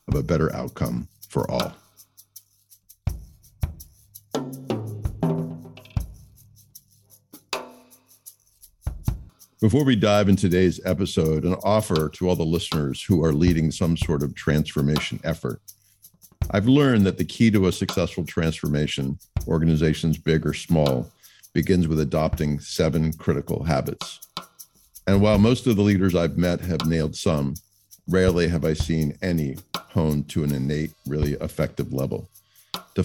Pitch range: 80-115 Hz